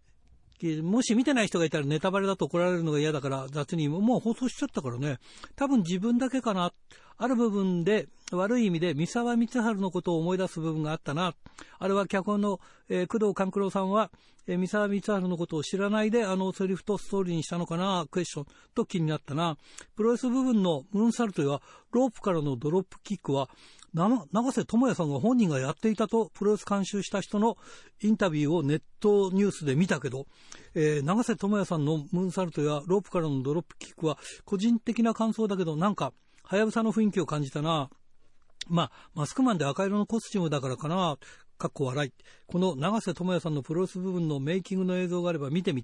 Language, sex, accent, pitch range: Japanese, male, native, 160-210 Hz